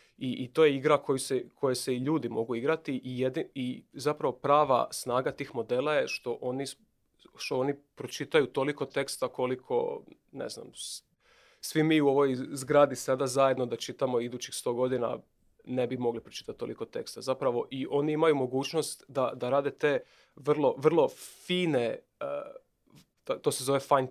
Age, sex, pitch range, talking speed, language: 30-49, male, 130-155 Hz, 165 wpm, Croatian